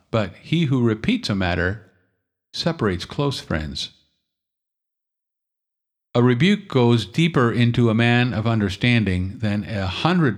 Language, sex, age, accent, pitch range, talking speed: English, male, 50-69, American, 95-125 Hz, 120 wpm